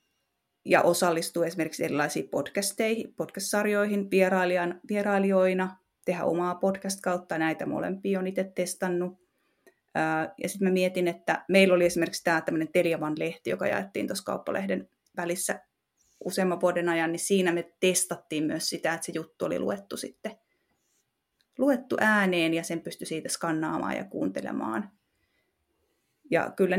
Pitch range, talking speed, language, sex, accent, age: 175-200 Hz, 135 wpm, Finnish, female, native, 30-49